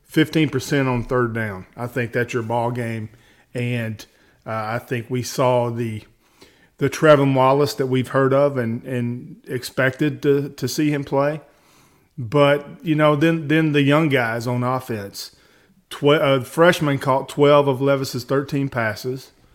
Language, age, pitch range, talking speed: English, 40-59, 120-145 Hz, 155 wpm